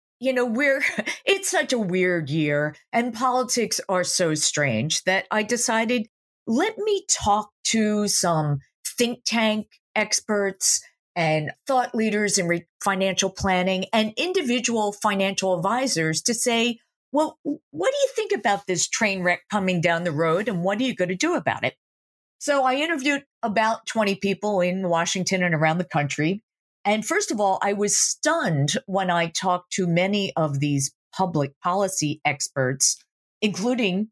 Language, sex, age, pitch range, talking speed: English, female, 50-69, 170-240 Hz, 155 wpm